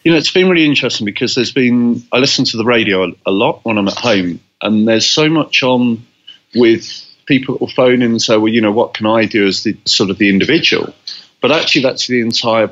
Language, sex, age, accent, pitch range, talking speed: English, male, 40-59, British, 105-125 Hz, 245 wpm